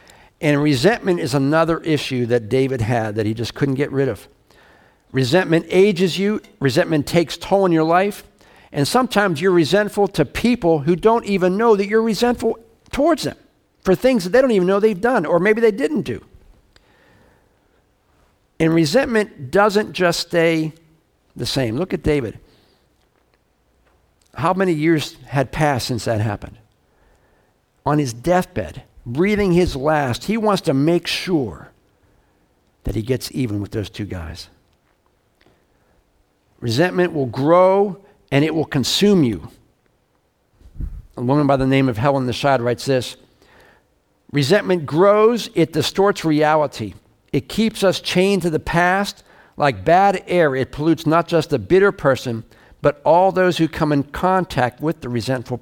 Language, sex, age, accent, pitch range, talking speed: English, male, 50-69, American, 130-190 Hz, 150 wpm